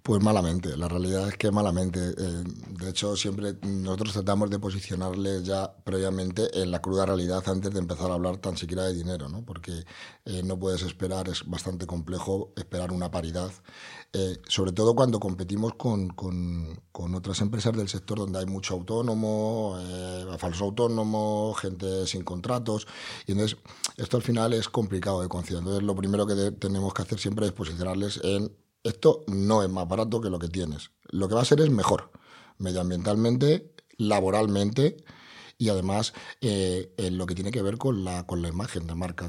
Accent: Spanish